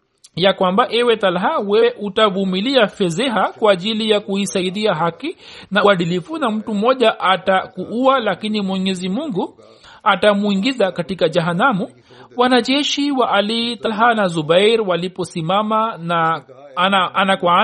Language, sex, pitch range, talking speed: Swahili, male, 190-235 Hz, 110 wpm